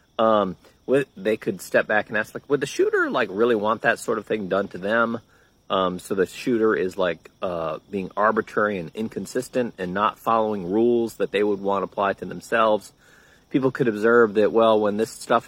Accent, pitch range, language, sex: American, 95-125 Hz, English, male